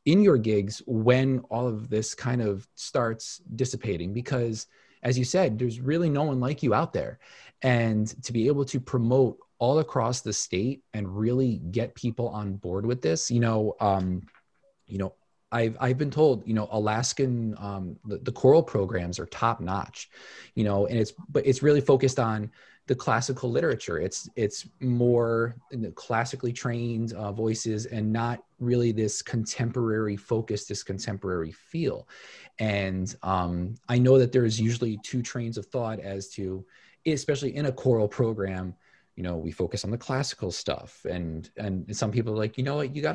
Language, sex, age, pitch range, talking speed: English, male, 20-39, 100-130 Hz, 180 wpm